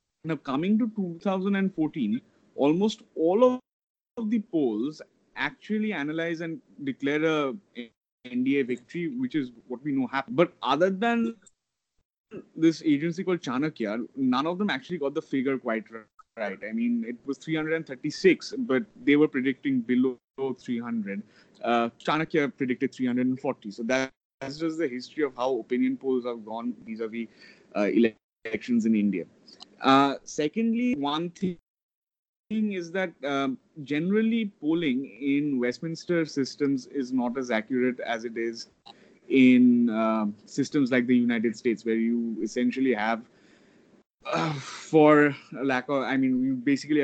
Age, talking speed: 30-49, 135 wpm